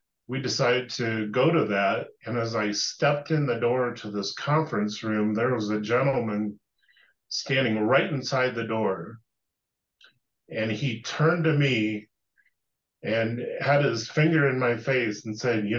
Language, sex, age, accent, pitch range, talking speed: English, male, 30-49, American, 105-130 Hz, 155 wpm